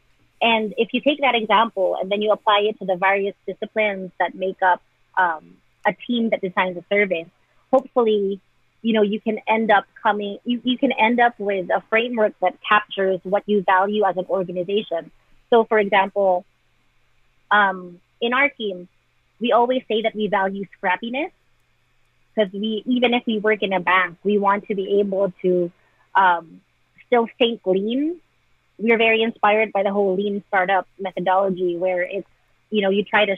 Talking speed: 175 wpm